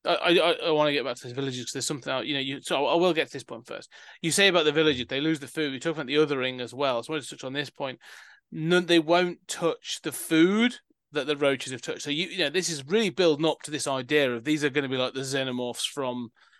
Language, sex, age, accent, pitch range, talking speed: English, male, 30-49, British, 130-160 Hz, 295 wpm